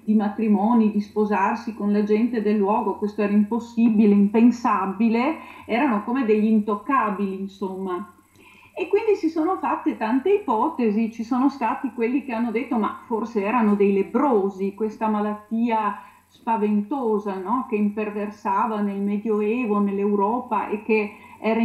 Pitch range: 205-235 Hz